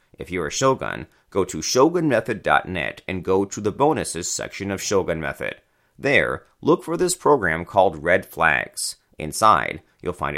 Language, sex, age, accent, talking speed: English, male, 30-49, American, 155 wpm